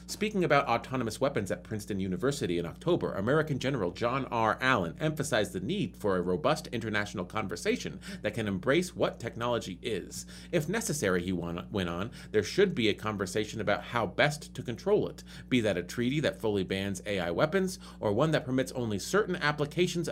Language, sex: English, male